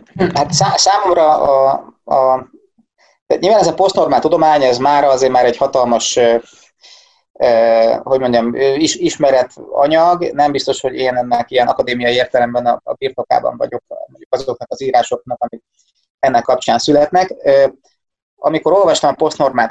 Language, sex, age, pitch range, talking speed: Hungarian, male, 30-49, 125-165 Hz, 135 wpm